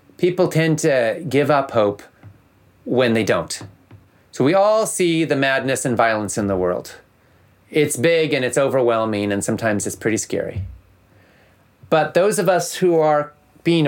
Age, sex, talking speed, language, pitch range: 30-49, male, 160 wpm, English, 110-155 Hz